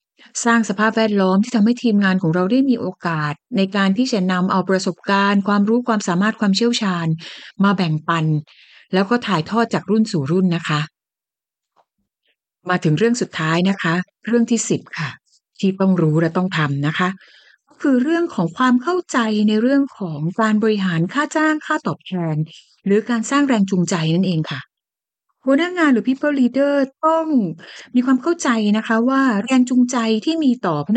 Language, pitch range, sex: Thai, 175-245 Hz, female